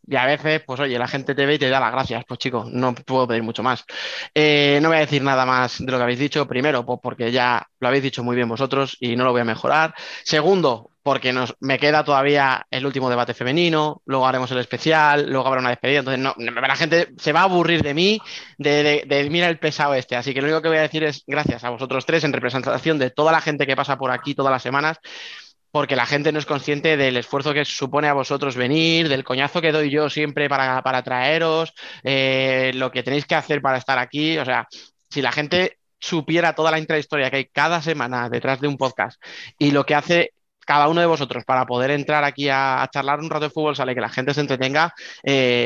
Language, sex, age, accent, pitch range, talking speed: Spanish, male, 20-39, Spanish, 130-155 Hz, 245 wpm